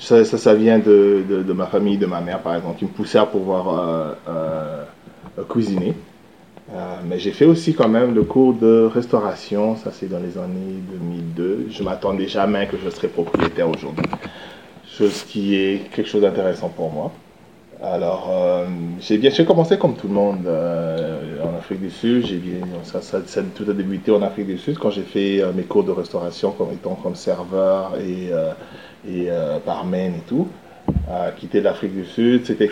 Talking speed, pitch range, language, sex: 200 wpm, 90-110 Hz, French, male